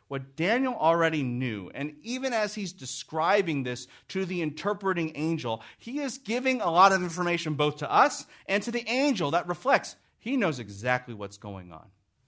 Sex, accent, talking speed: male, American, 175 wpm